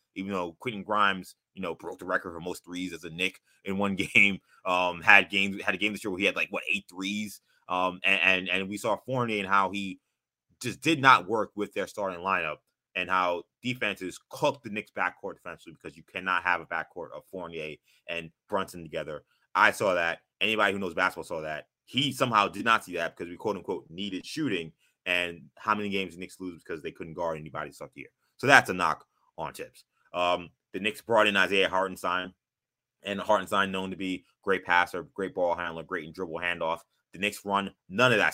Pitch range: 90-105 Hz